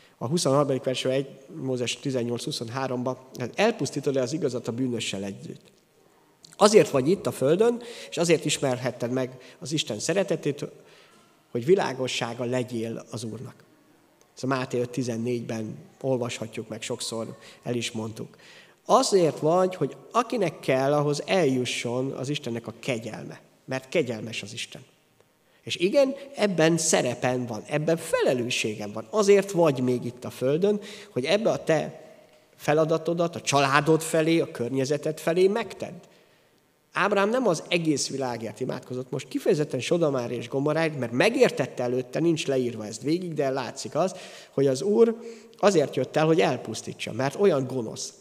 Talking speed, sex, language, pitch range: 140 wpm, male, Hungarian, 120-160 Hz